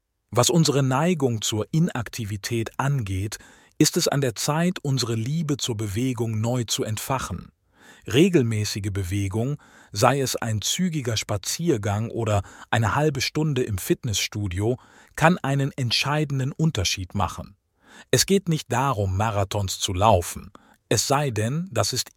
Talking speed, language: 130 wpm, German